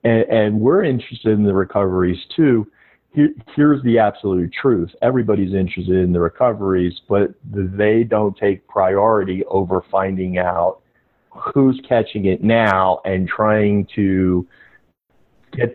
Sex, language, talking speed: male, English, 125 wpm